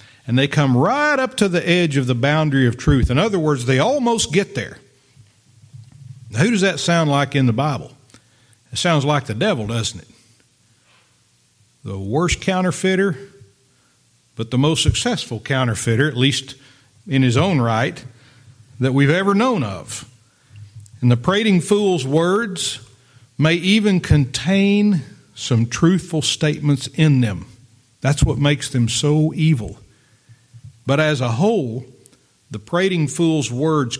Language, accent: English, American